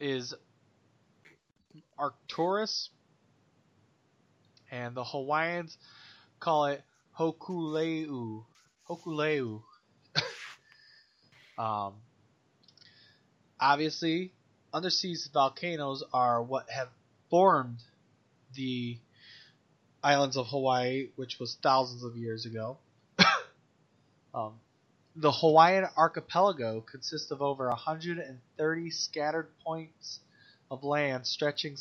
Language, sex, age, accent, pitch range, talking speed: English, male, 20-39, American, 130-160 Hz, 75 wpm